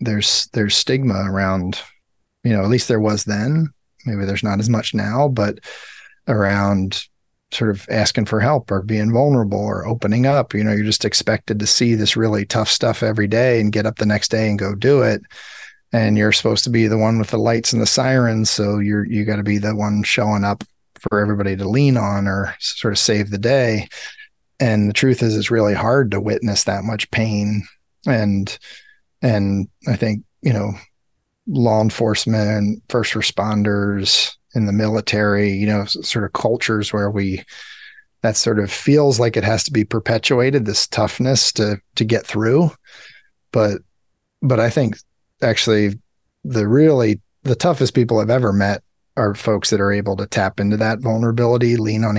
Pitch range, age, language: 105-120 Hz, 40-59, English